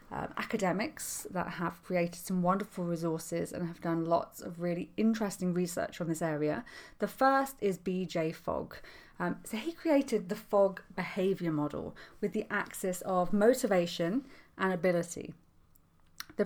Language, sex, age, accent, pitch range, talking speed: English, female, 30-49, British, 170-220 Hz, 145 wpm